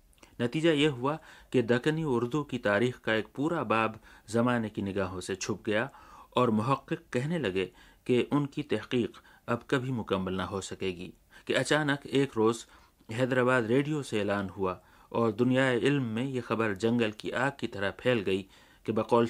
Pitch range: 105-130 Hz